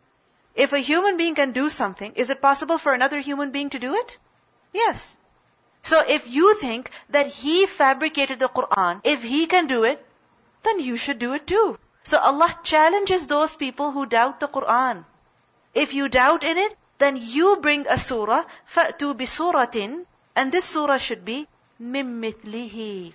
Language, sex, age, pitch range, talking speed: English, female, 40-59, 235-310 Hz, 170 wpm